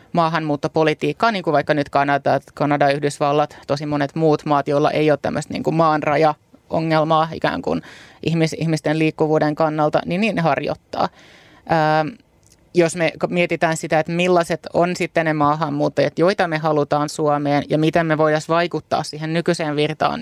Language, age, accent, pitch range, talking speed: Finnish, 20-39, native, 145-160 Hz, 150 wpm